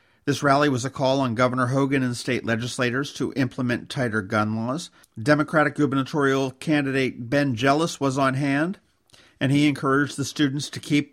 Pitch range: 120-150 Hz